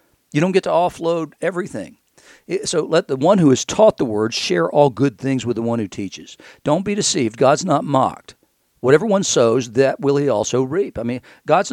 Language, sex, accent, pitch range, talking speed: English, male, American, 125-170 Hz, 210 wpm